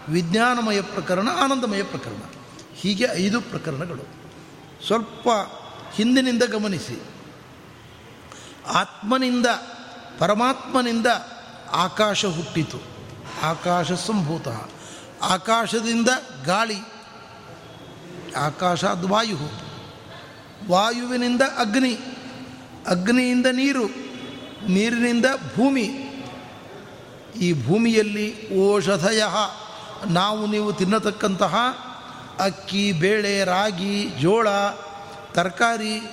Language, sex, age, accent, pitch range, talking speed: Kannada, male, 60-79, native, 180-230 Hz, 60 wpm